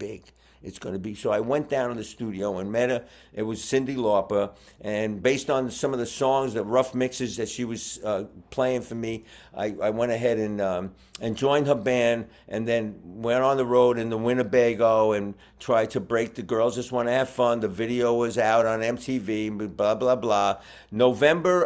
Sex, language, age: male, English, 50-69